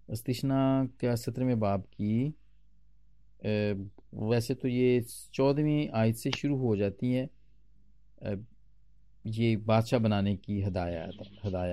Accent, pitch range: native, 105-135 Hz